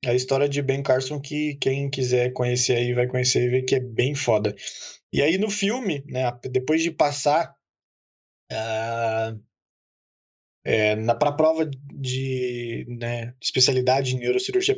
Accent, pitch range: Brazilian, 125-155 Hz